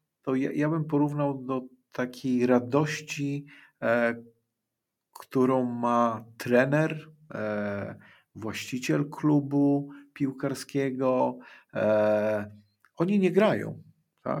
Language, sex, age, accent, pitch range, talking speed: Polish, male, 50-69, native, 115-140 Hz, 70 wpm